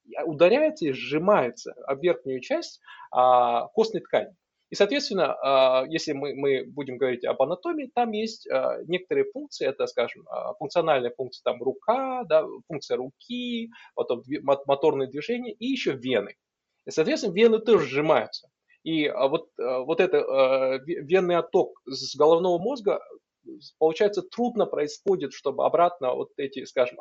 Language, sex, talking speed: Russian, male, 125 wpm